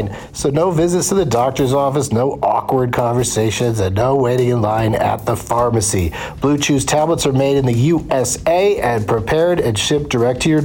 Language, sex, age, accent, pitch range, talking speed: English, male, 50-69, American, 120-165 Hz, 185 wpm